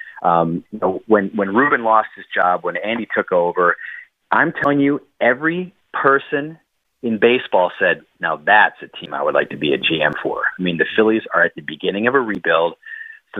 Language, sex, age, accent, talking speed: English, male, 30-49, American, 200 wpm